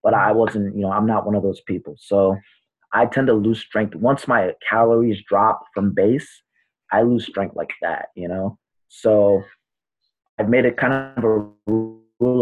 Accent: American